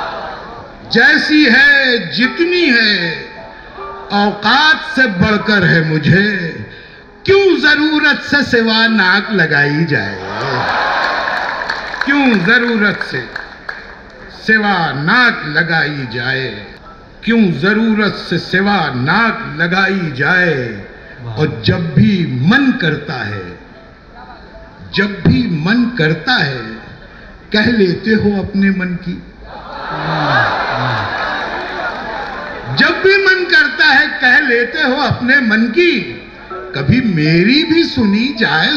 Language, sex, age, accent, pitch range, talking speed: Hindi, male, 60-79, native, 155-250 Hz, 100 wpm